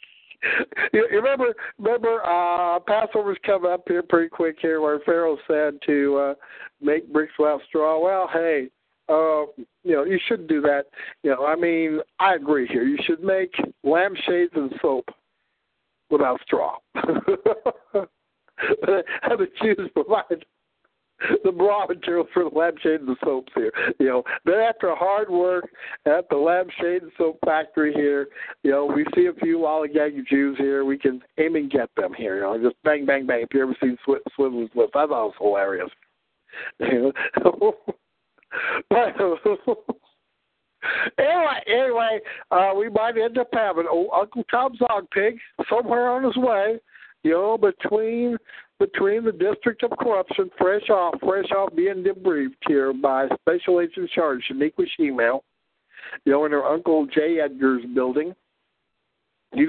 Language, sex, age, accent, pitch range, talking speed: English, male, 60-79, American, 145-235 Hz, 155 wpm